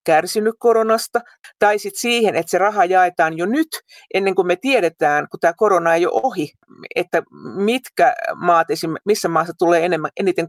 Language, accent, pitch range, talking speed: Finnish, native, 165-245 Hz, 160 wpm